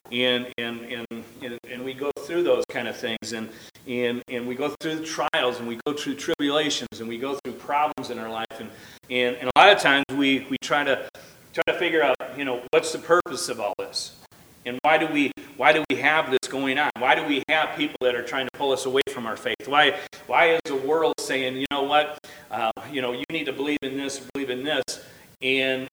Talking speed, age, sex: 235 wpm, 40-59, male